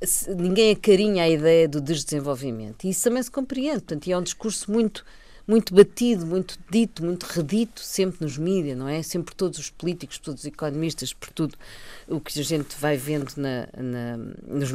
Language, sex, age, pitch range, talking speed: Portuguese, female, 40-59, 145-195 Hz, 190 wpm